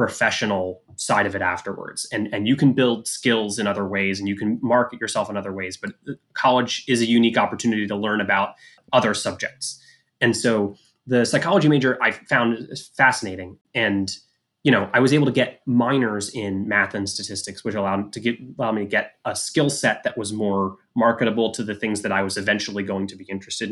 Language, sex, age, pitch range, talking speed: English, male, 20-39, 100-125 Hz, 200 wpm